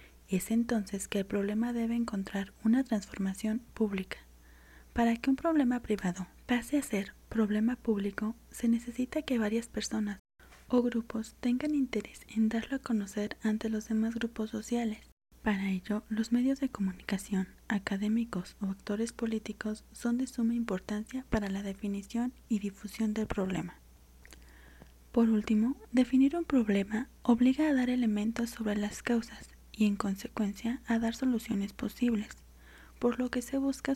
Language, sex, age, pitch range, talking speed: Spanish, female, 20-39, 205-235 Hz, 145 wpm